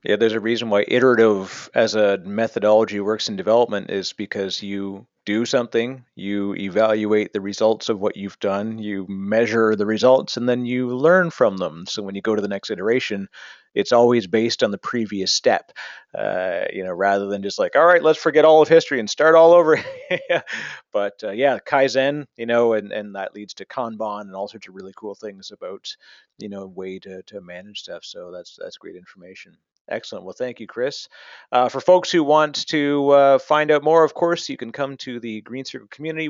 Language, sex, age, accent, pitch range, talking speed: English, male, 30-49, American, 105-145 Hz, 210 wpm